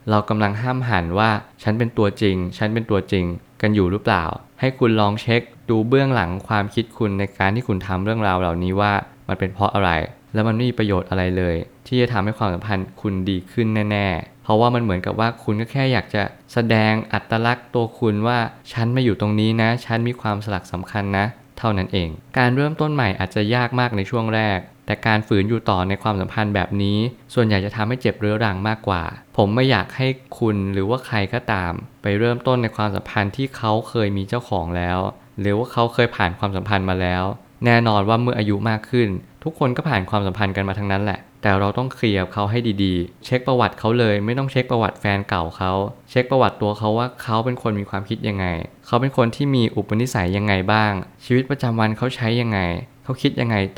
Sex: male